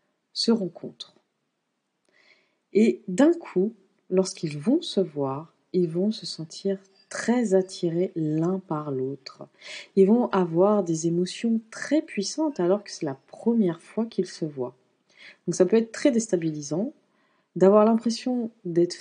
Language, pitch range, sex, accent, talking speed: French, 165-215 Hz, female, French, 135 wpm